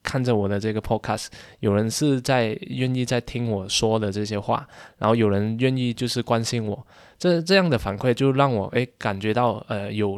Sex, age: male, 20-39